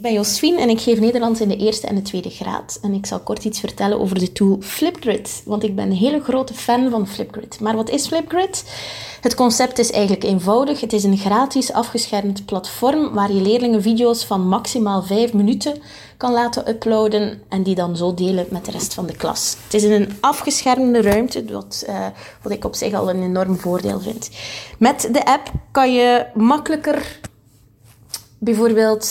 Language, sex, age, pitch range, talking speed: Dutch, female, 20-39, 200-240 Hz, 190 wpm